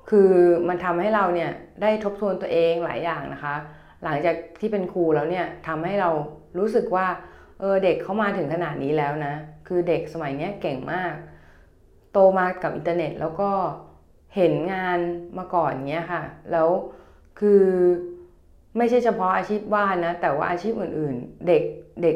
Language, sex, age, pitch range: Thai, female, 20-39, 150-185 Hz